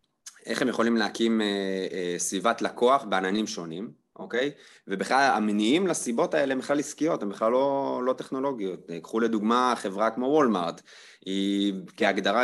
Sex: male